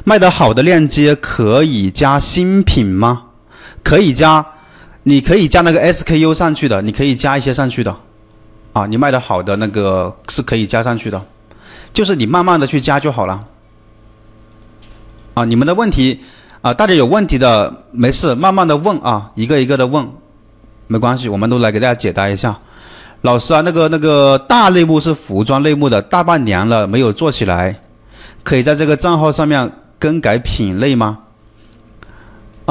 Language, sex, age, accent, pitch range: Chinese, male, 30-49, native, 110-155 Hz